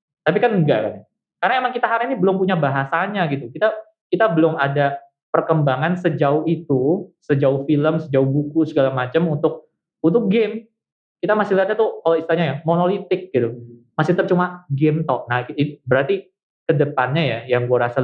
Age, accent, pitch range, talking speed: 20-39, native, 140-180 Hz, 165 wpm